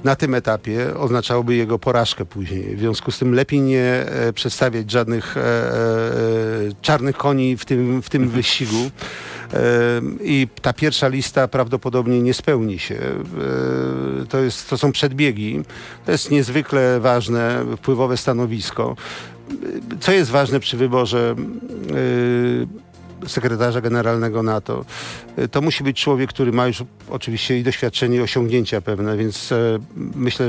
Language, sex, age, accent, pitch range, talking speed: Polish, male, 50-69, native, 115-135 Hz, 120 wpm